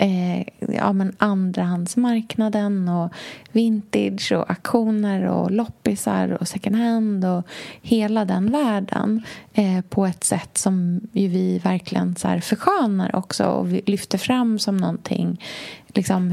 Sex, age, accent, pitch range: female, 30-49, native, 180-225 Hz